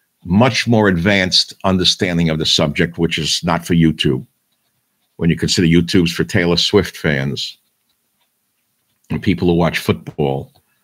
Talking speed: 140 wpm